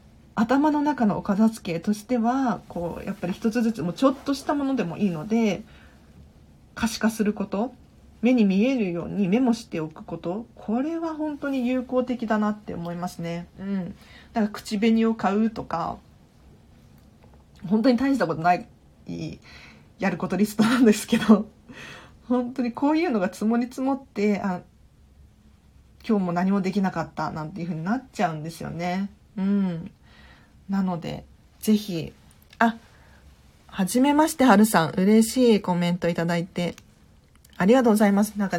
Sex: female